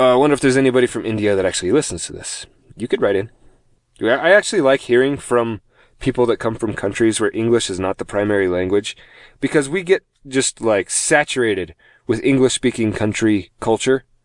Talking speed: 185 wpm